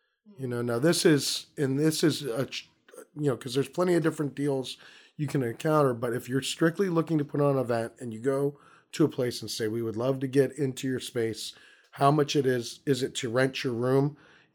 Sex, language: male, English